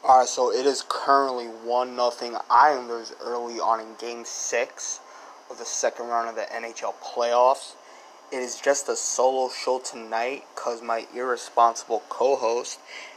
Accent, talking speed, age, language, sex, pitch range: American, 155 wpm, 20-39, English, male, 115-140 Hz